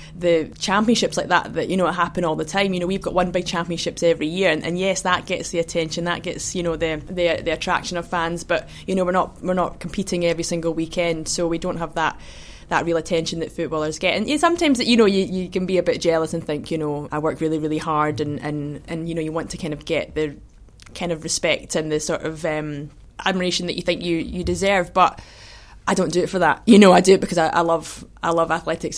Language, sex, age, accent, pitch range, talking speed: English, female, 20-39, British, 160-180 Hz, 265 wpm